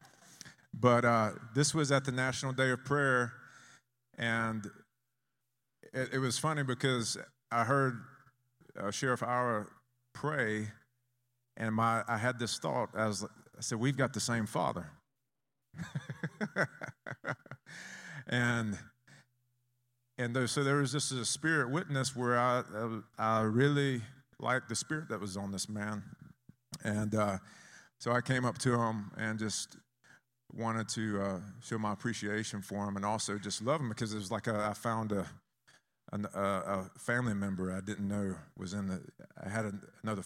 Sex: male